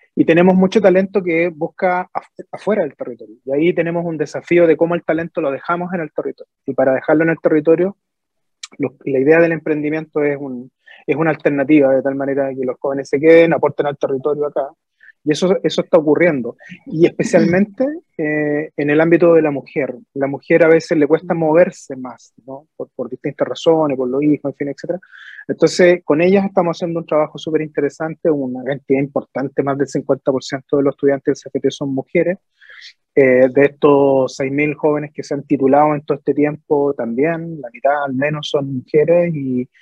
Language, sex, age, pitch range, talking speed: Spanish, male, 30-49, 140-170 Hz, 185 wpm